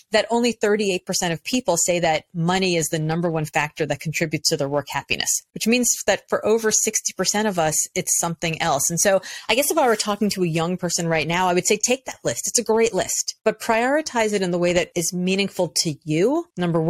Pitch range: 170-215 Hz